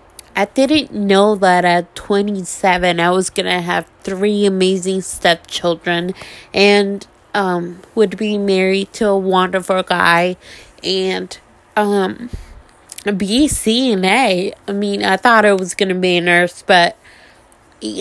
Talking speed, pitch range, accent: 135 wpm, 180-220 Hz, American